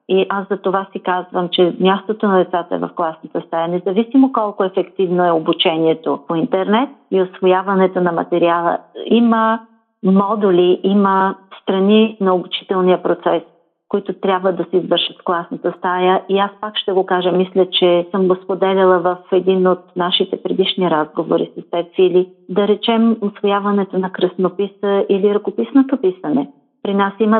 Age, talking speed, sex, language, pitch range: 40-59, 155 wpm, female, Bulgarian, 175-200 Hz